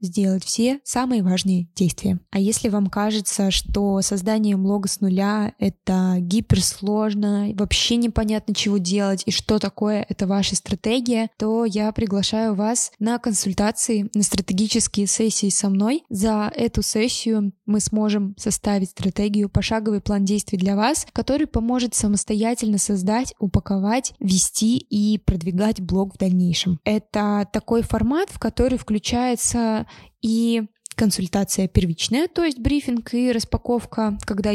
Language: Russian